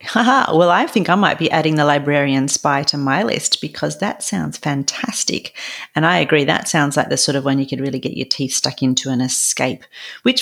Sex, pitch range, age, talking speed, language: female, 145-205 Hz, 40-59, 220 wpm, English